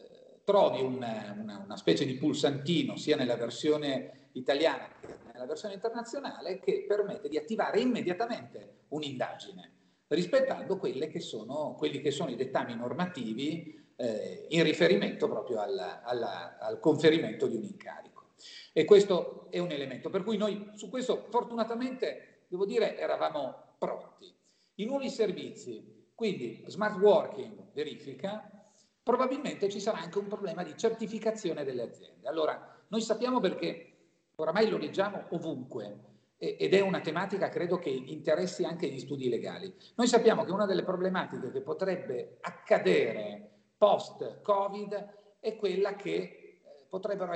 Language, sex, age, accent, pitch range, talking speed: Italian, male, 50-69, native, 155-225 Hz, 135 wpm